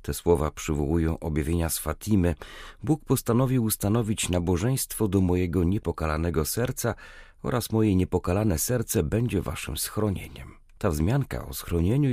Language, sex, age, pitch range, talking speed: Polish, male, 40-59, 80-110 Hz, 125 wpm